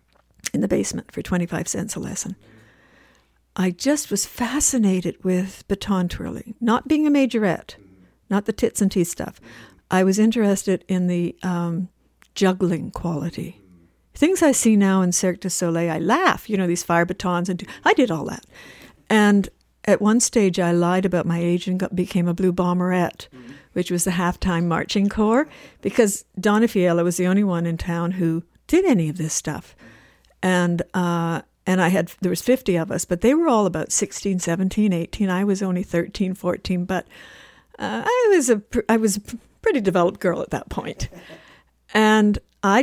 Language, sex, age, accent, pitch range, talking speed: English, female, 60-79, American, 175-205 Hz, 175 wpm